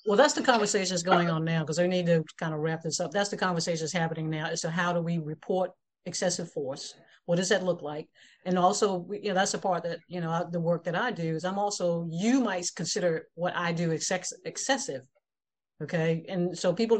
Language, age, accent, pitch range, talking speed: English, 50-69, American, 160-190 Hz, 230 wpm